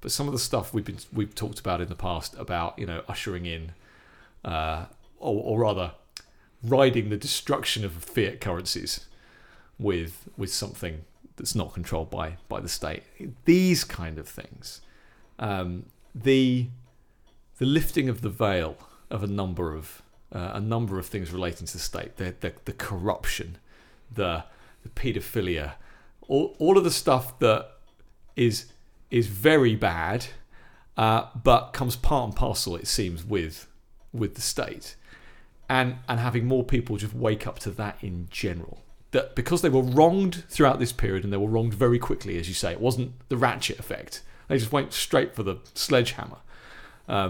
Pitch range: 90-125 Hz